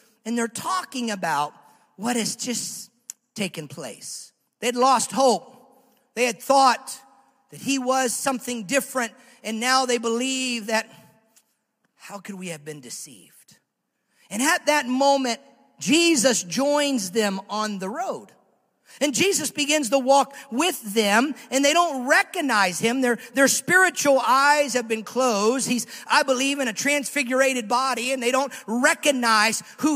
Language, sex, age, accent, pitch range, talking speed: English, male, 40-59, American, 235-300 Hz, 150 wpm